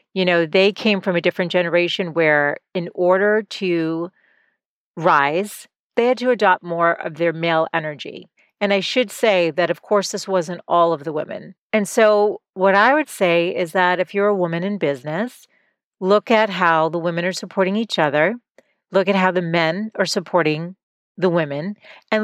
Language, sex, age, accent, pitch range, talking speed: English, female, 40-59, American, 170-200 Hz, 185 wpm